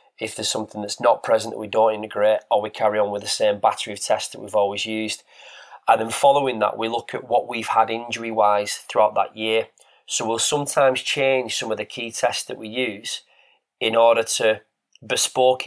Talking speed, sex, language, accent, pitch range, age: 205 wpm, male, English, British, 110-125 Hz, 30-49